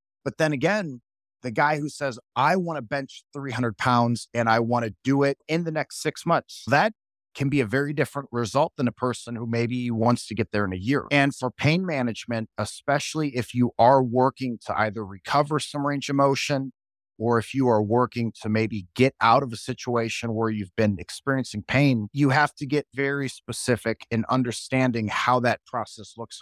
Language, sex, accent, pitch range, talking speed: English, male, American, 110-140 Hz, 200 wpm